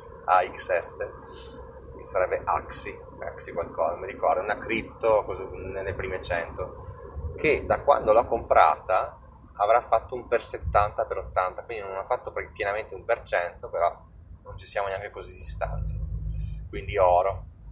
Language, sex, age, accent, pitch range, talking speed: Italian, male, 20-39, native, 80-120 Hz, 140 wpm